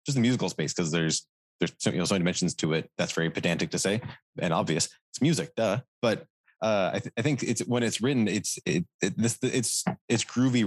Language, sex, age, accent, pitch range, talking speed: English, male, 20-39, American, 90-110 Hz, 210 wpm